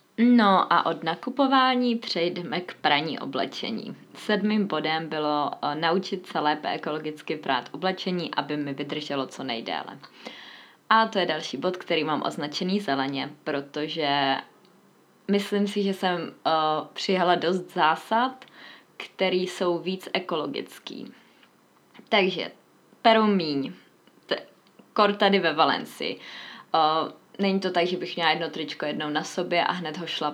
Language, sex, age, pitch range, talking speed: Czech, female, 20-39, 160-195 Hz, 125 wpm